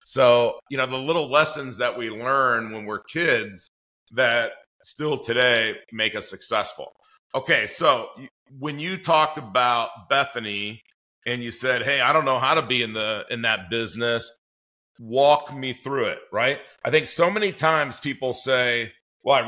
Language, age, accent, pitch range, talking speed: English, 40-59, American, 120-140 Hz, 165 wpm